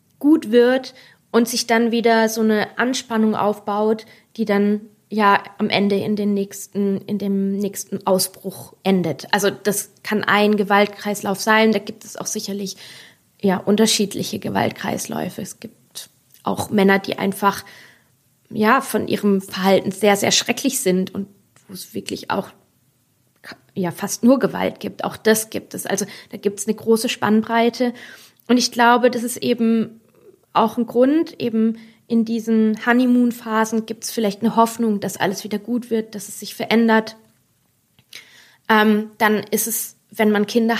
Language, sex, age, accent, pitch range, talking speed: German, female, 20-39, German, 205-230 Hz, 155 wpm